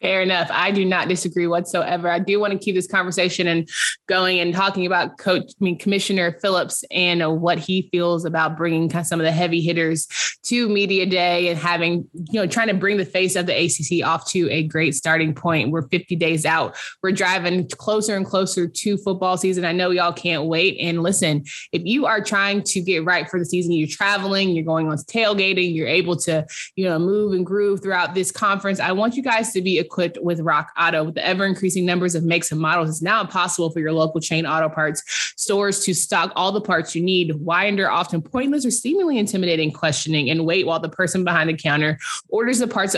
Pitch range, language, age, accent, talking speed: 165-190 Hz, English, 20-39, American, 220 wpm